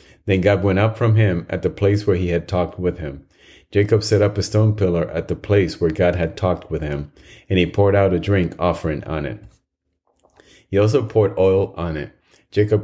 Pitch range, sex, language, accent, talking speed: 85-105 Hz, male, English, American, 215 wpm